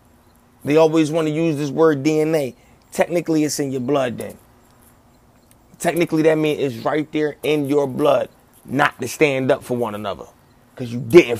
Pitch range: 120-145 Hz